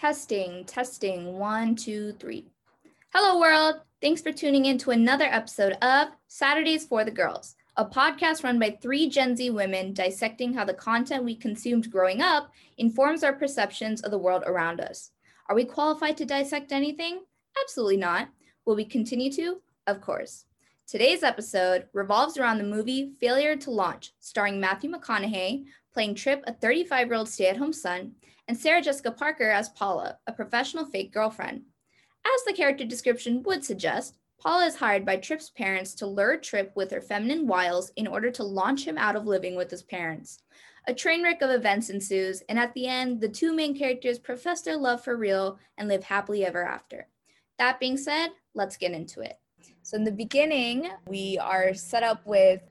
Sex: female